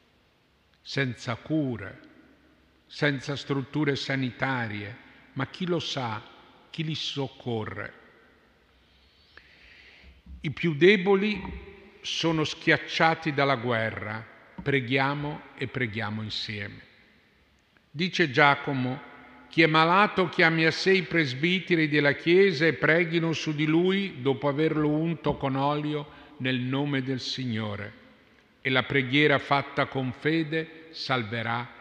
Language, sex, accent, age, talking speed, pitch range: Italian, male, native, 50-69, 105 wpm, 120-160 Hz